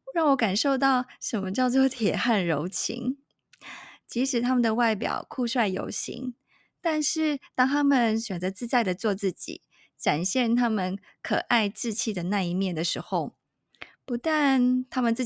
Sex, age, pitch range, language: female, 20-39, 190-255 Hz, Chinese